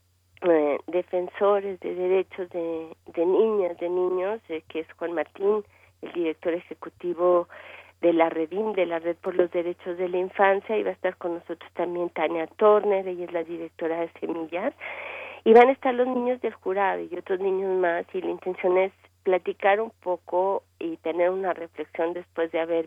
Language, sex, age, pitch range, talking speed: Spanish, female, 40-59, 165-195 Hz, 185 wpm